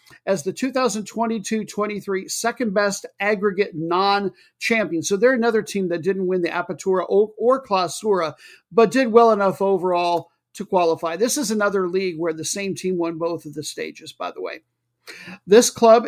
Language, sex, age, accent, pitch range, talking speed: English, male, 50-69, American, 170-215 Hz, 155 wpm